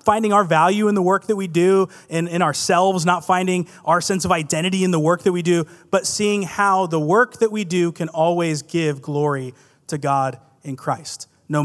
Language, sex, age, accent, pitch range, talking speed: English, male, 30-49, American, 165-200 Hz, 210 wpm